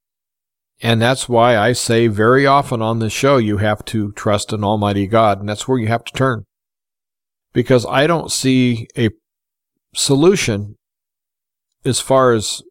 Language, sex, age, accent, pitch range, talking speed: English, male, 50-69, American, 110-130 Hz, 155 wpm